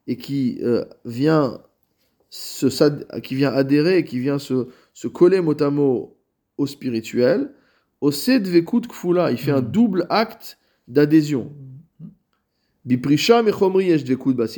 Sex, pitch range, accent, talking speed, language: male, 120-165 Hz, French, 100 wpm, French